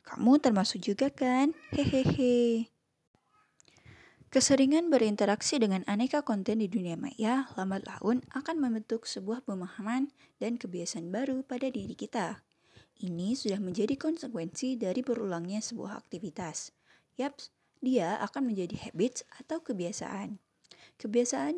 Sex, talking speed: female, 115 wpm